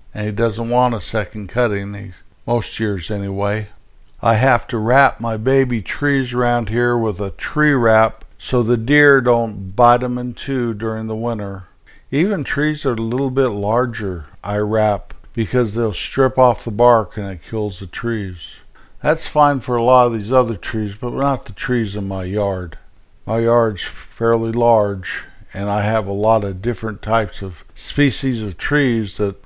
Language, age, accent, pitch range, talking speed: English, 50-69, American, 105-125 Hz, 180 wpm